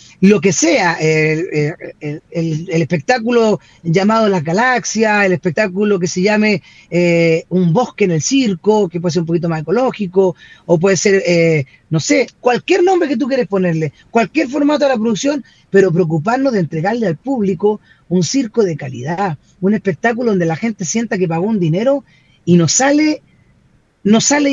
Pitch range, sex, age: 175-240 Hz, female, 30-49